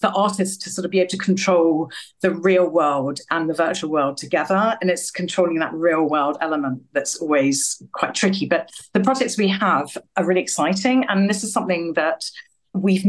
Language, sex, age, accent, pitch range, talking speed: English, female, 50-69, British, 155-195 Hz, 190 wpm